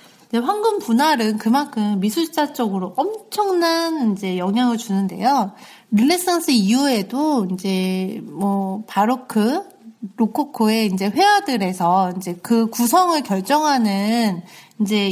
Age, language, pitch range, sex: 30-49, Korean, 200-290 Hz, female